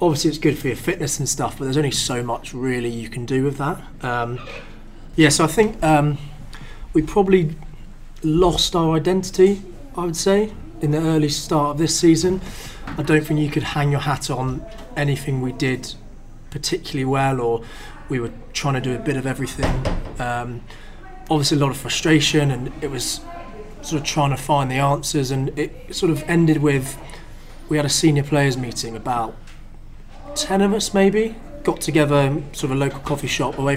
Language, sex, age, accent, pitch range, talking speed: English, male, 20-39, British, 120-150 Hz, 190 wpm